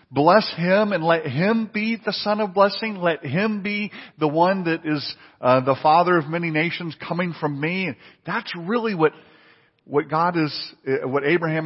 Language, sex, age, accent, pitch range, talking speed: English, male, 50-69, American, 130-180 Hz, 180 wpm